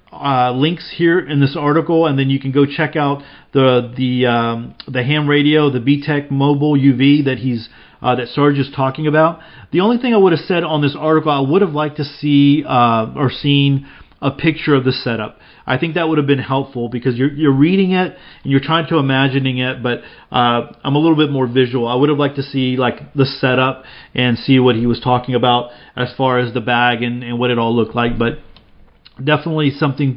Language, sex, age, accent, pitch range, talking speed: English, male, 40-59, American, 125-150 Hz, 225 wpm